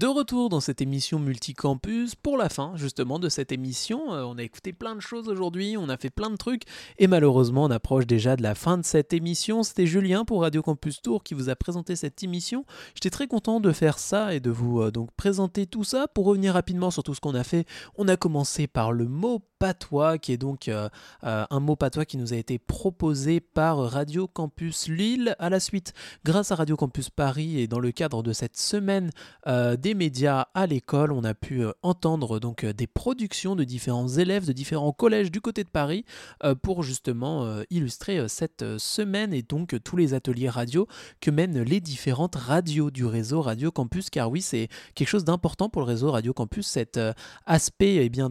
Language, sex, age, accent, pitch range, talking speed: French, male, 20-39, French, 130-190 Hz, 210 wpm